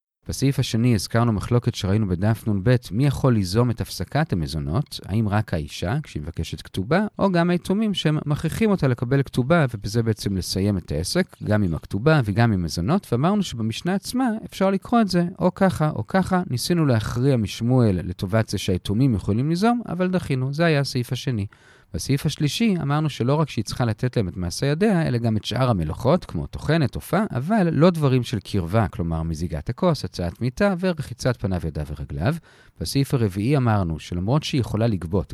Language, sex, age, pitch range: Hebrew, male, 40-59, 100-160 Hz